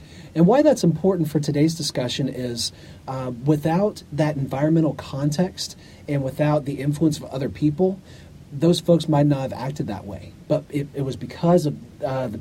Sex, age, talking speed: male, 40-59, 175 wpm